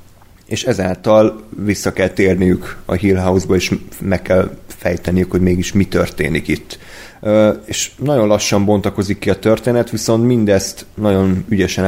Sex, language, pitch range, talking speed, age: male, Hungarian, 90-105 Hz, 140 wpm, 30-49